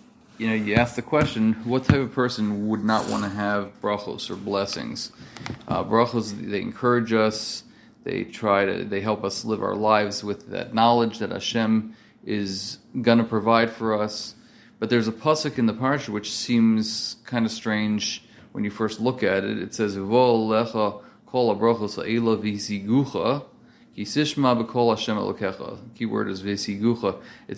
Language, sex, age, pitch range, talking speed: English, male, 30-49, 105-120 Hz, 155 wpm